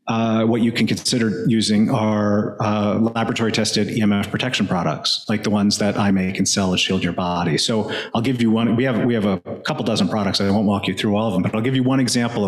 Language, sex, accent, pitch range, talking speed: English, male, American, 100-120 Hz, 245 wpm